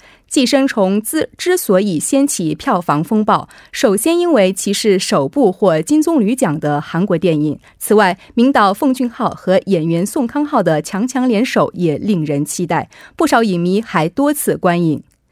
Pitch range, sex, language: 175-260 Hz, female, Korean